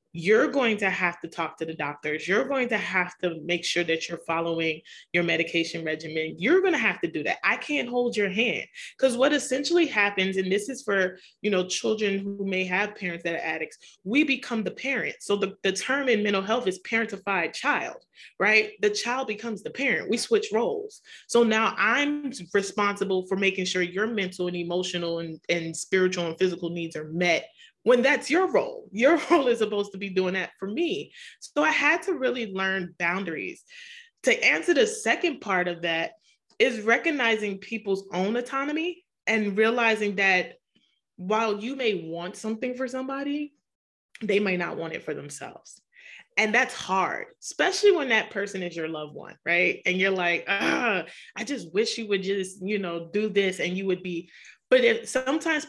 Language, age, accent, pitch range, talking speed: English, 30-49, American, 180-265 Hz, 190 wpm